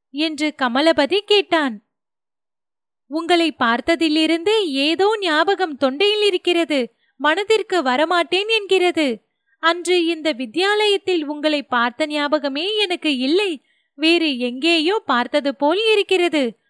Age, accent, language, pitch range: 30-49, native, Tamil, 280-390 Hz